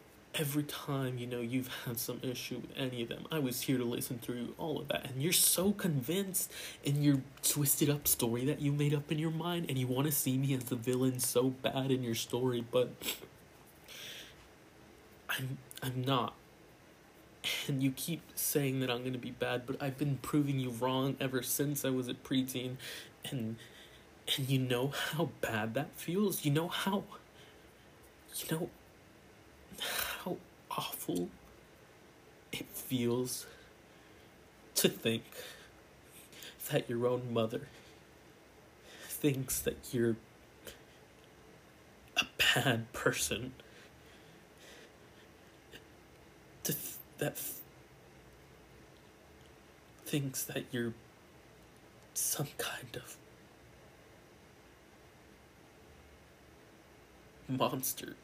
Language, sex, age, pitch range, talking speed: English, male, 20-39, 120-145 Hz, 115 wpm